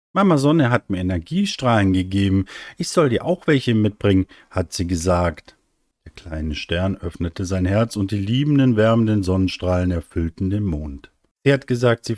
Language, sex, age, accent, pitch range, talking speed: German, male, 50-69, German, 85-120 Hz, 165 wpm